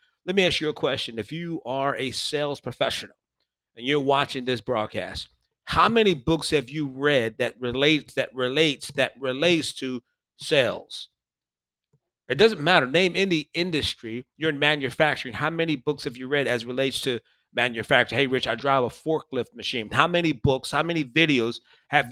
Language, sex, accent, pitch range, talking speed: English, male, American, 125-155 Hz, 175 wpm